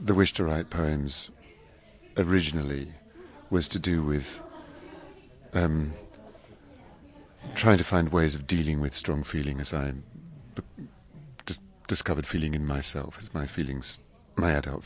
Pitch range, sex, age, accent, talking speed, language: 75-85 Hz, male, 50-69, British, 125 wpm, English